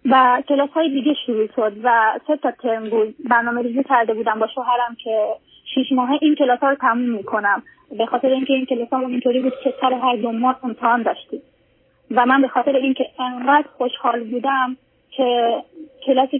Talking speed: 185 wpm